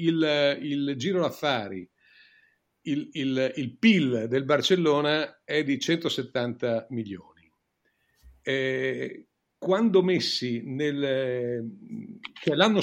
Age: 50-69